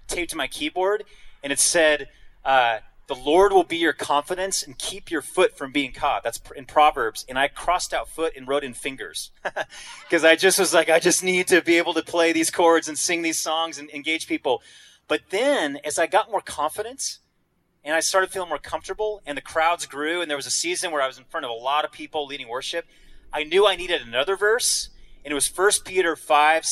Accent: American